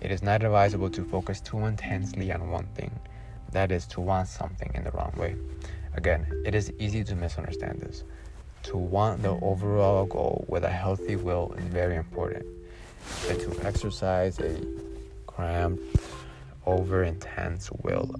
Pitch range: 85-100 Hz